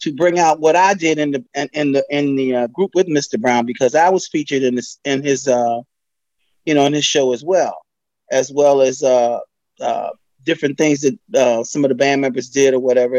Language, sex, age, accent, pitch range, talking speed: English, male, 30-49, American, 120-150 Hz, 225 wpm